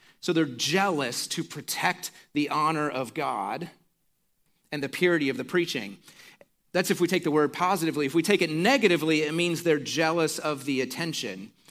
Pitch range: 125-165 Hz